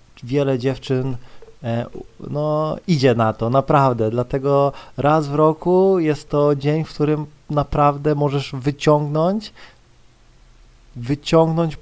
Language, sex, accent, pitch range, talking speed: Polish, male, native, 125-150 Hz, 100 wpm